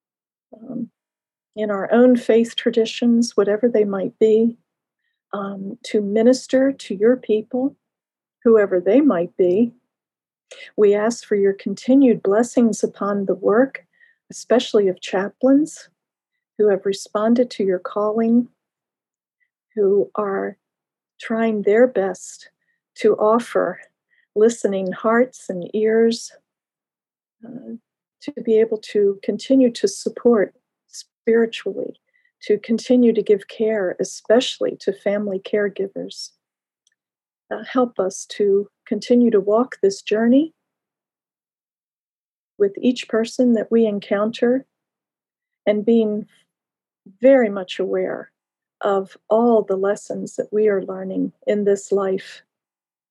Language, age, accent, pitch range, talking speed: English, 50-69, American, 205-250 Hz, 110 wpm